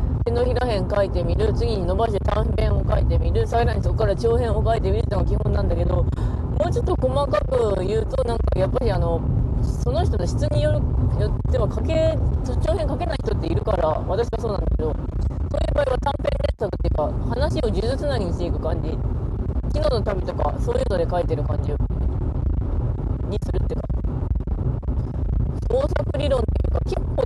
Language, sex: Japanese, female